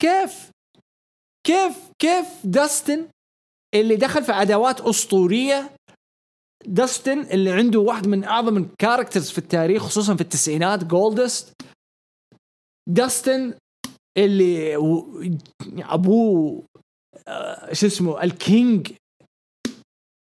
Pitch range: 190-295 Hz